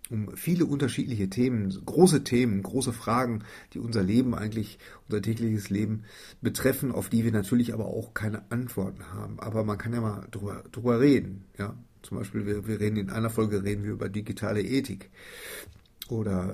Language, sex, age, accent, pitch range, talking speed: German, male, 50-69, German, 100-115 Hz, 175 wpm